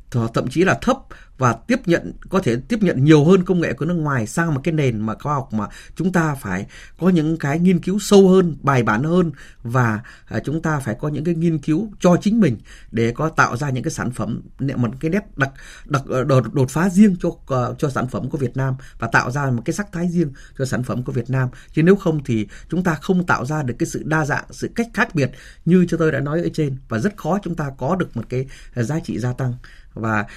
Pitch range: 125-170 Hz